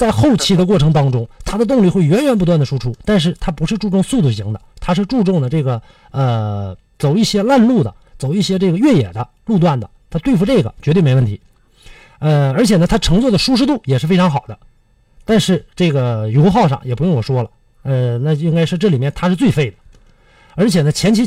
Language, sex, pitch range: Chinese, male, 130-200 Hz